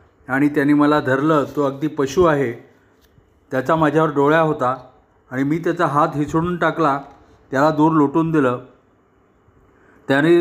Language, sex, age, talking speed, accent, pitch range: Marathi, male, 40-59, 135 wpm, native, 135-165 Hz